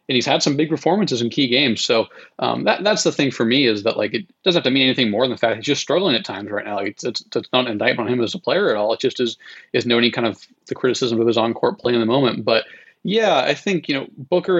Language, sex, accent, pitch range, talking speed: English, male, American, 115-135 Hz, 305 wpm